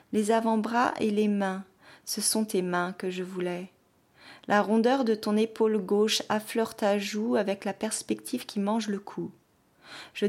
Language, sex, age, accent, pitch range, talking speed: French, female, 30-49, French, 195-225 Hz, 170 wpm